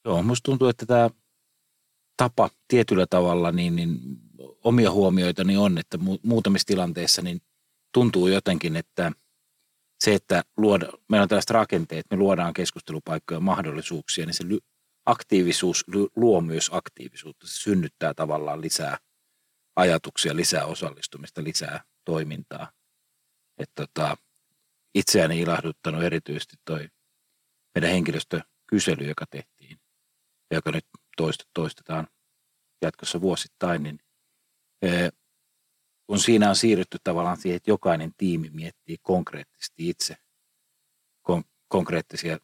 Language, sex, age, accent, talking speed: Finnish, male, 40-59, native, 100 wpm